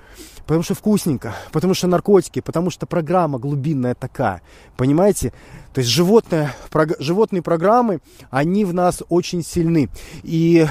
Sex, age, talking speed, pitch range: male, 20-39, 125 wpm, 130-175 Hz